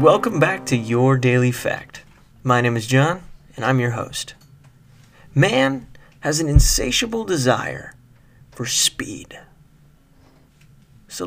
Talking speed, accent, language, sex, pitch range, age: 115 wpm, American, English, male, 130-165 Hz, 30-49